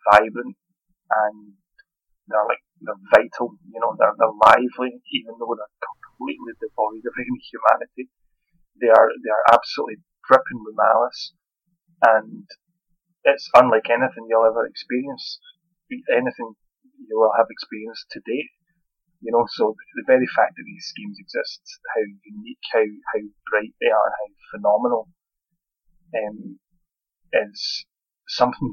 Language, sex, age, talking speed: English, male, 30-49, 130 wpm